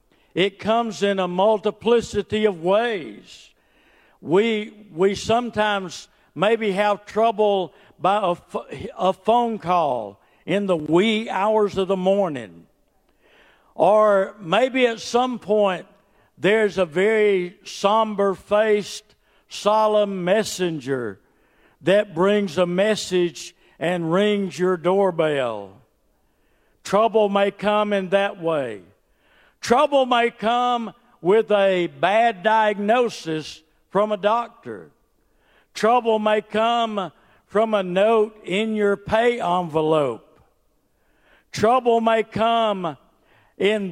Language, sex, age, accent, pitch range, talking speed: English, male, 60-79, American, 180-220 Hz, 100 wpm